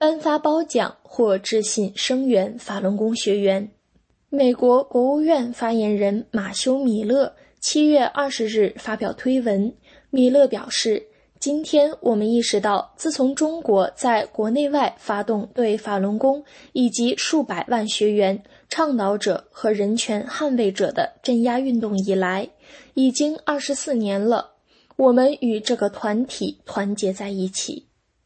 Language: English